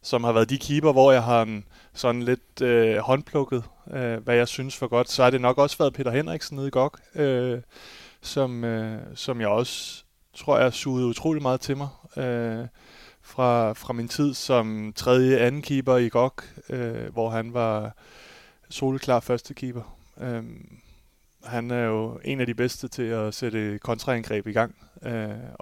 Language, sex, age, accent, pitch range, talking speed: Danish, male, 30-49, native, 110-130 Hz, 175 wpm